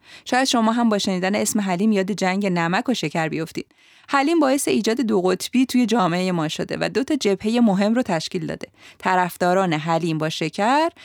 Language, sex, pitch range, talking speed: Persian, female, 175-230 Hz, 180 wpm